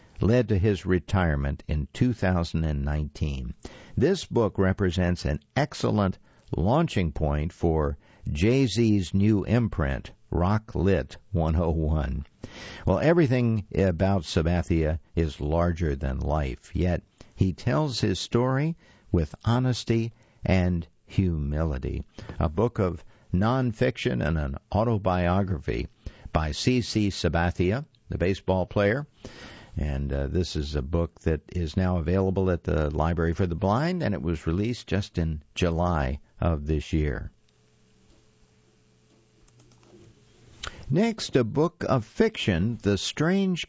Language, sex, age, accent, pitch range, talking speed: English, male, 60-79, American, 80-115 Hz, 115 wpm